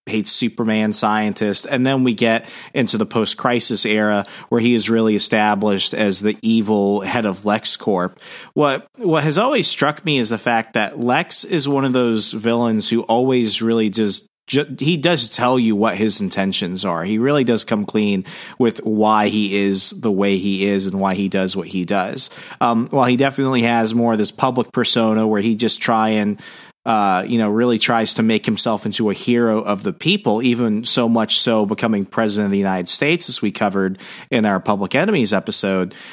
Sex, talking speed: male, 195 wpm